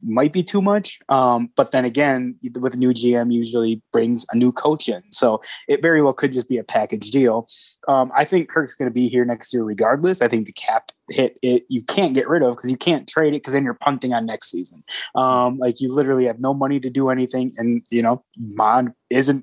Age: 20-39